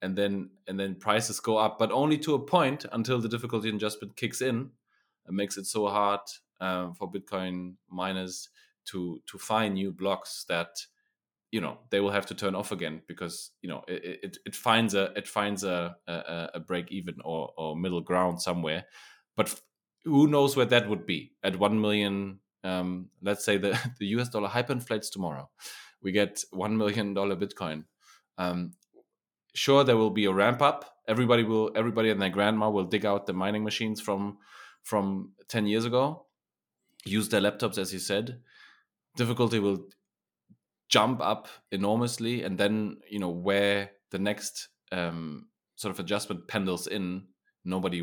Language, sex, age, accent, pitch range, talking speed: English, male, 20-39, German, 90-110 Hz, 170 wpm